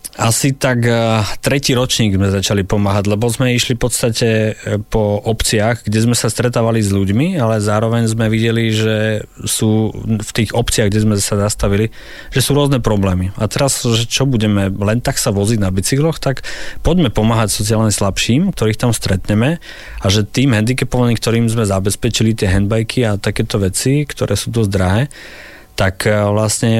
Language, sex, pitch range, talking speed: Slovak, male, 100-120 Hz, 165 wpm